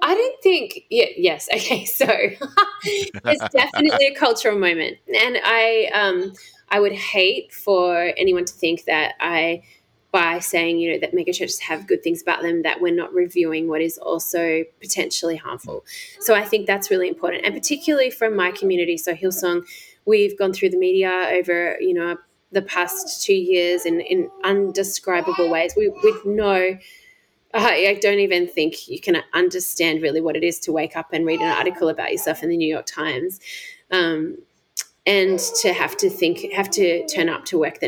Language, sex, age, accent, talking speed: English, female, 20-39, Australian, 180 wpm